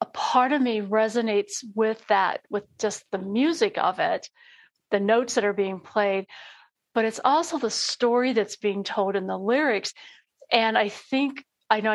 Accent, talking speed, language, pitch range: American, 175 wpm, English, 205-240 Hz